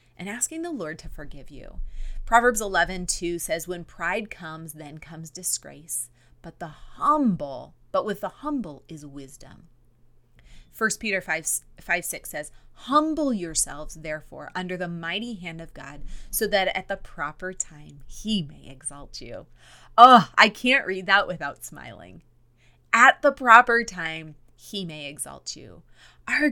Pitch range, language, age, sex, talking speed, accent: 155-225 Hz, English, 30-49, female, 150 wpm, American